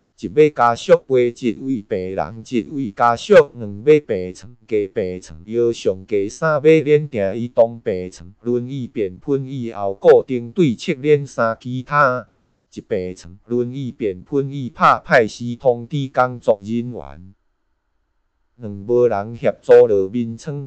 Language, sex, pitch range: Chinese, male, 100-140 Hz